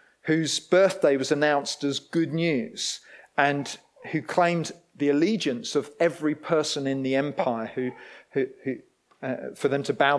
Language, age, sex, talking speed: English, 40-59, male, 155 wpm